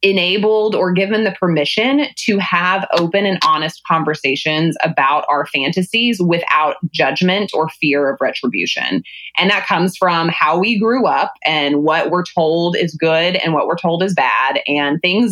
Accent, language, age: American, English, 20-39